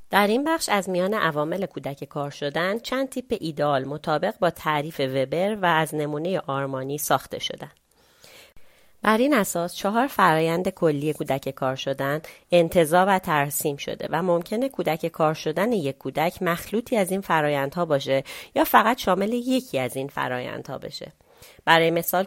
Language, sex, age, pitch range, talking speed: Persian, female, 30-49, 150-195 Hz, 155 wpm